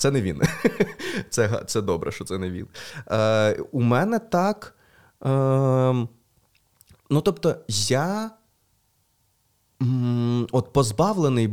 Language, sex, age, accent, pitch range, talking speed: Ukrainian, male, 20-39, native, 95-140 Hz, 95 wpm